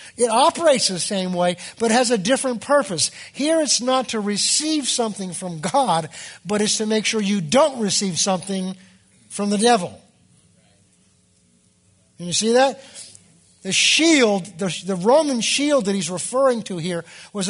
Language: English